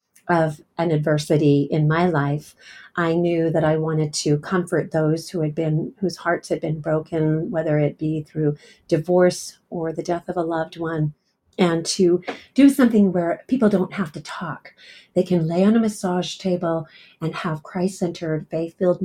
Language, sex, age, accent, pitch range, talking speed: English, female, 40-59, American, 155-195 Hz, 175 wpm